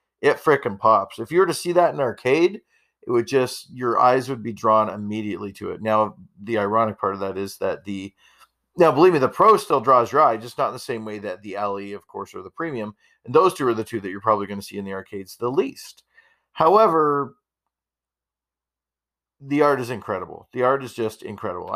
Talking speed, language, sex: 225 wpm, English, male